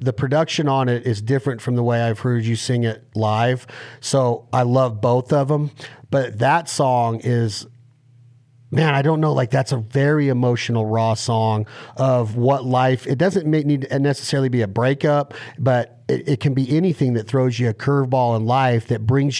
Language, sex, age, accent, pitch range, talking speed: English, male, 40-59, American, 120-145 Hz, 195 wpm